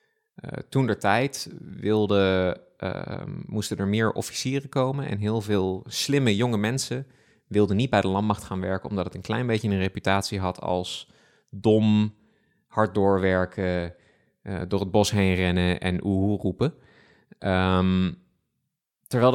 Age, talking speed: 20-39, 135 wpm